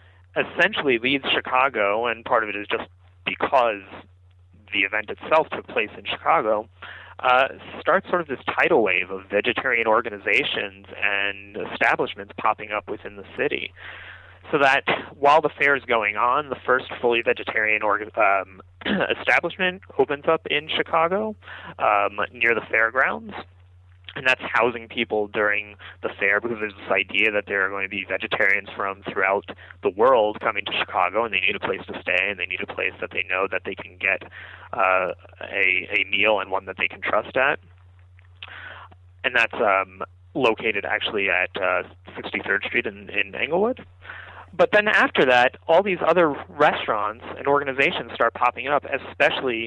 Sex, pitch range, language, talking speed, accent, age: male, 90-120 Hz, English, 165 wpm, American, 30-49